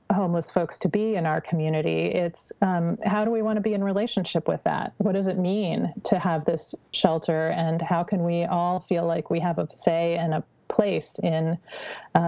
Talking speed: 210 wpm